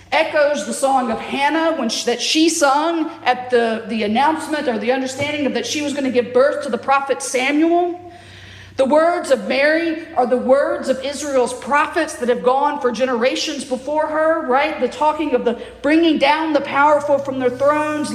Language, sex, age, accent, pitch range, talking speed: English, female, 50-69, American, 245-310 Hz, 180 wpm